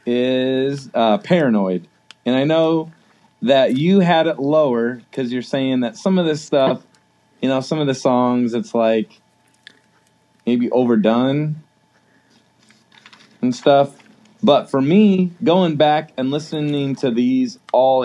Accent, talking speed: American, 135 wpm